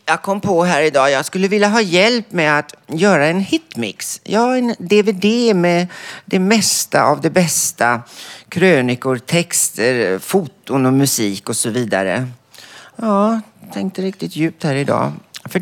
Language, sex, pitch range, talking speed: Swedish, male, 130-195 Hz, 160 wpm